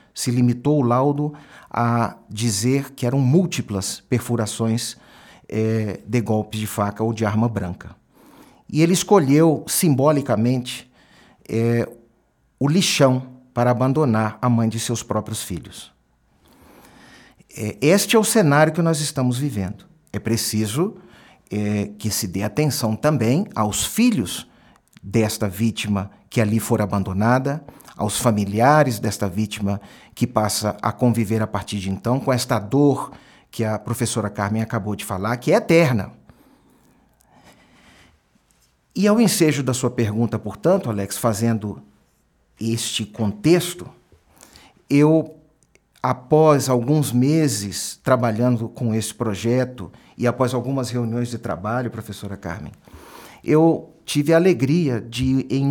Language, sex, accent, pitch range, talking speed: Portuguese, male, Brazilian, 105-140 Hz, 120 wpm